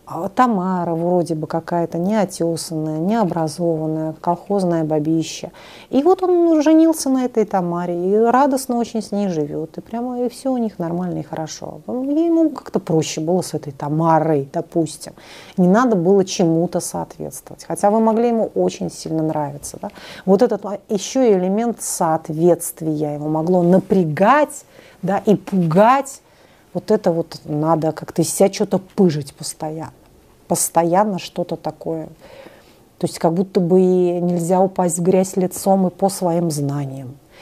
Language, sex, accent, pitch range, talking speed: Russian, female, native, 160-205 Hz, 140 wpm